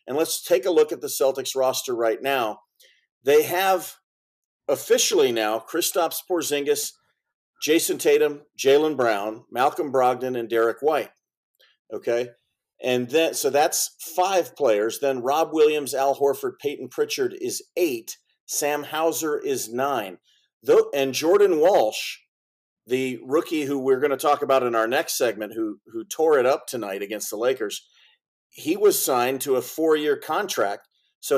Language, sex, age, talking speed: English, male, 40-59, 150 wpm